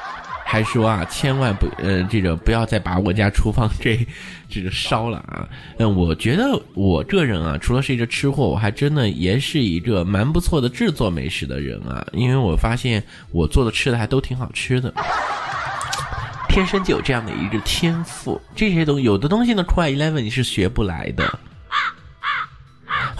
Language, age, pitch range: Chinese, 20-39, 95-135 Hz